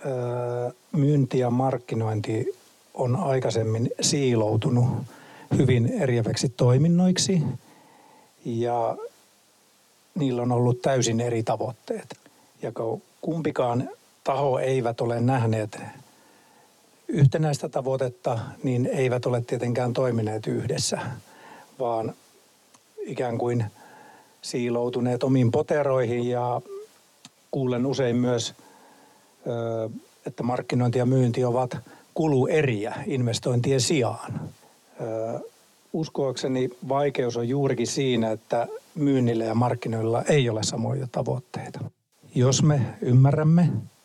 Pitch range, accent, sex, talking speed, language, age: 120-140 Hz, native, male, 90 wpm, Finnish, 60-79